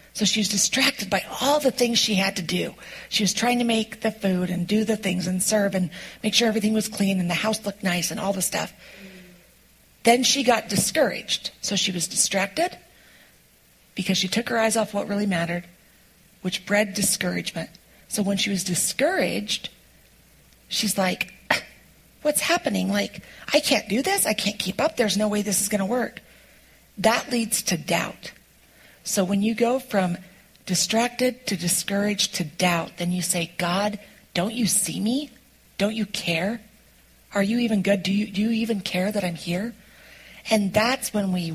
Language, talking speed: English, 185 wpm